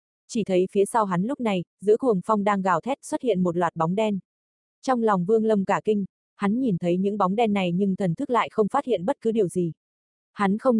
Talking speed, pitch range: 250 wpm, 180-220 Hz